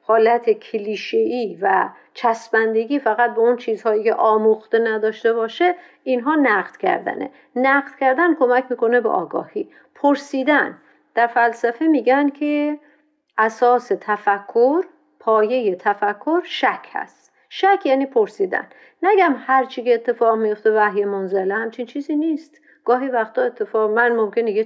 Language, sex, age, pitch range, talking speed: Persian, female, 50-69, 220-300 Hz, 125 wpm